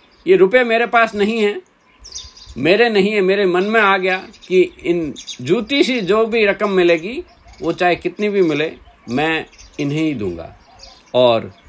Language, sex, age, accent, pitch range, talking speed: Hindi, male, 50-69, native, 130-205 Hz, 165 wpm